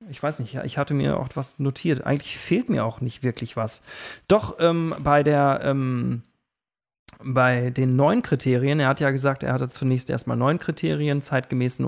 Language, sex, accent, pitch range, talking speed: German, male, German, 125-160 Hz, 180 wpm